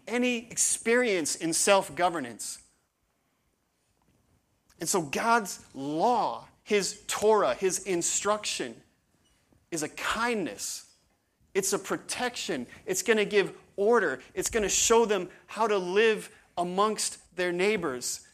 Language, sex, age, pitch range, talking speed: English, male, 30-49, 160-205 Hz, 115 wpm